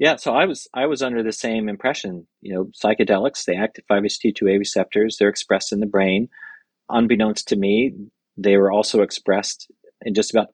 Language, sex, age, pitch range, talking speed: English, male, 40-59, 95-110 Hz, 190 wpm